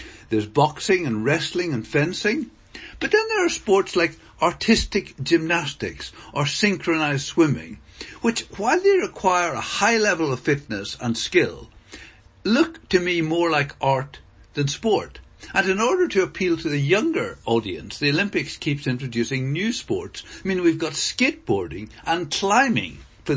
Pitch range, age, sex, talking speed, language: 130-195 Hz, 60-79, male, 150 wpm, English